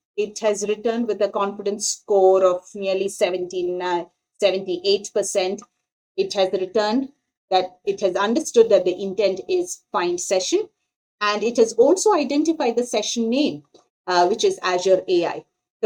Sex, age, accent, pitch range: female, 30-49, Indian, 175-215 Hz